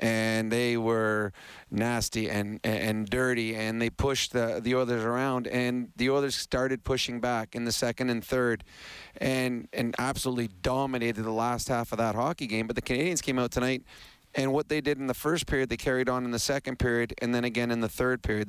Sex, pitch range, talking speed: male, 115-130 Hz, 210 wpm